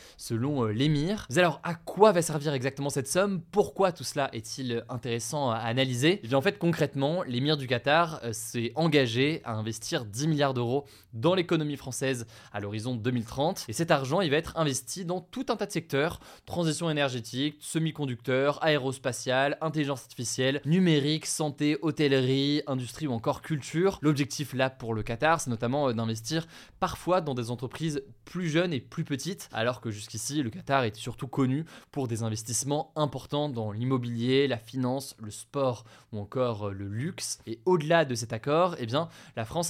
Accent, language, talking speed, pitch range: French, French, 170 wpm, 120-160 Hz